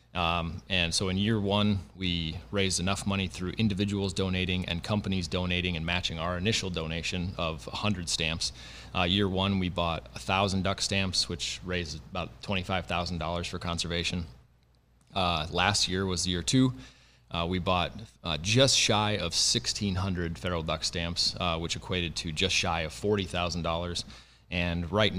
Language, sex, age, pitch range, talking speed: English, male, 30-49, 85-100 Hz, 155 wpm